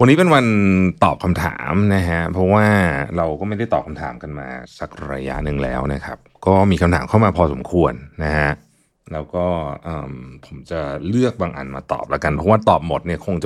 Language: Thai